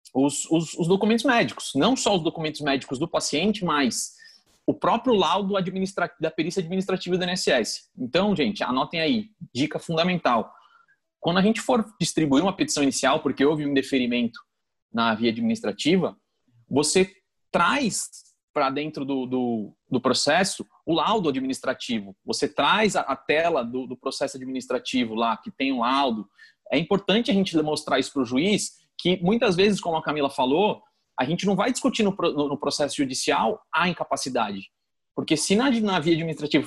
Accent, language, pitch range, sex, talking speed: Brazilian, Portuguese, 140-205 Hz, male, 160 wpm